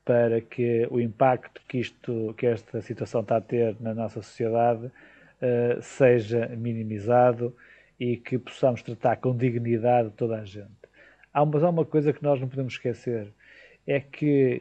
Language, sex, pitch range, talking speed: Portuguese, male, 115-135 Hz, 150 wpm